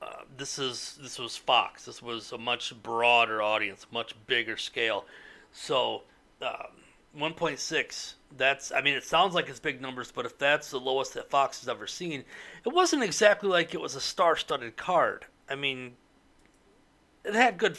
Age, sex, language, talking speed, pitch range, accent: 30-49, male, English, 170 wpm, 125-185 Hz, American